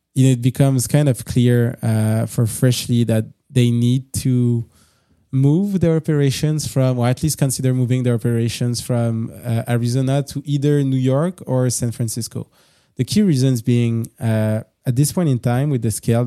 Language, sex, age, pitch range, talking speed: English, male, 20-39, 115-130 Hz, 170 wpm